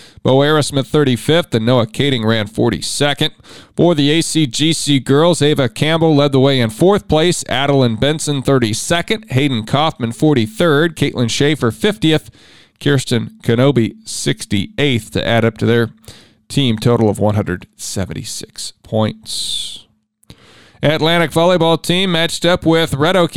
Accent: American